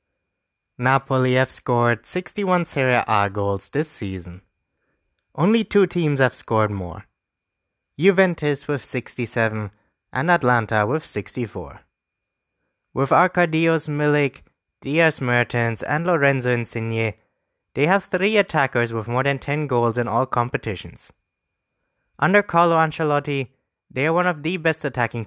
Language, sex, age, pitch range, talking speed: English, male, 20-39, 110-160 Hz, 120 wpm